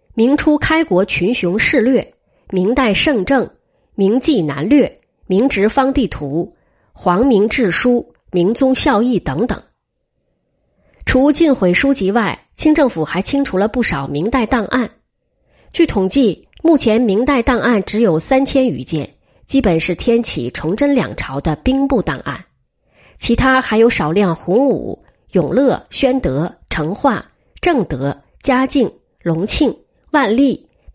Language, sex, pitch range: Chinese, female, 180-265 Hz